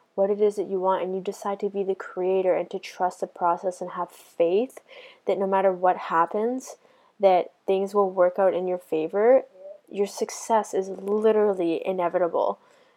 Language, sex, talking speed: English, female, 180 wpm